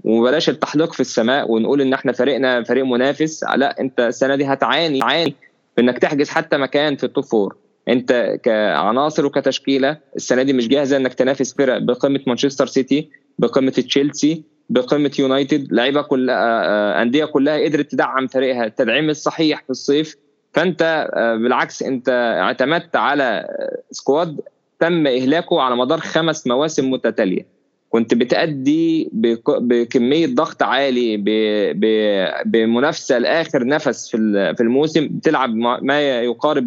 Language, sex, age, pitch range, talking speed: Arabic, male, 20-39, 125-155 Hz, 120 wpm